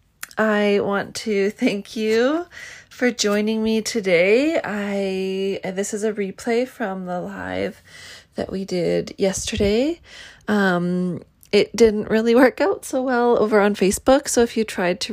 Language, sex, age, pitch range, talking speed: English, female, 20-39, 185-230 Hz, 145 wpm